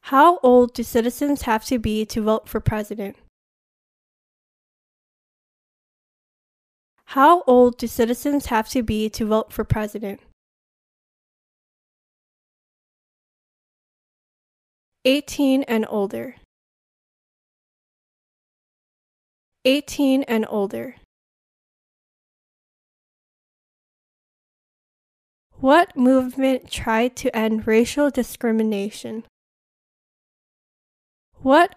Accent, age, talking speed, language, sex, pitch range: American, 10-29, 70 wpm, English, female, 220-265 Hz